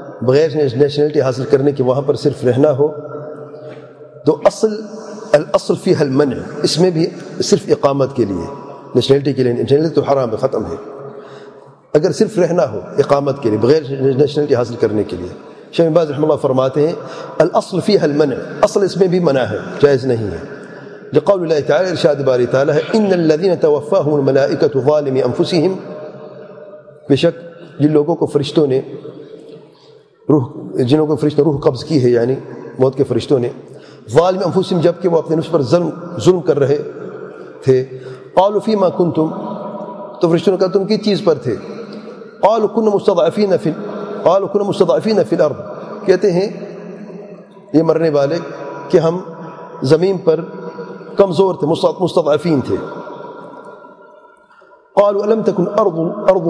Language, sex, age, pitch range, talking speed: English, male, 40-59, 145-200 Hz, 120 wpm